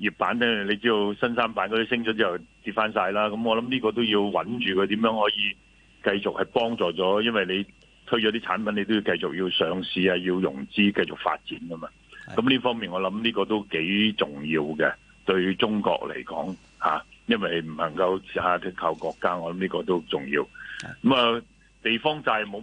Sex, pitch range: male, 95-115 Hz